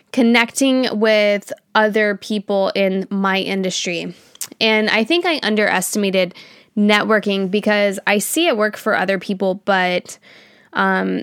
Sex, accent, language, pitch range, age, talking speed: female, American, English, 185-215 Hz, 10-29, 125 wpm